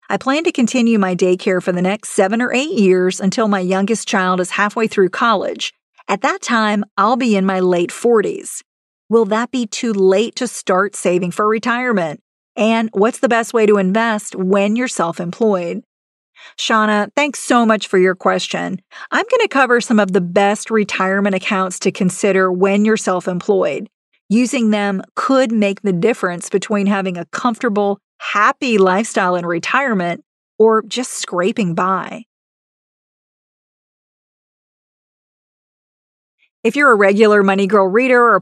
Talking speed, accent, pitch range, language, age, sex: 155 wpm, American, 190-230 Hz, English, 40-59, female